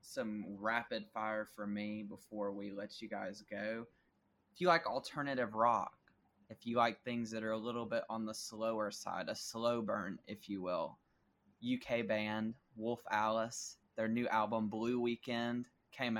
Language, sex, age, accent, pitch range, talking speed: English, male, 20-39, American, 110-130 Hz, 165 wpm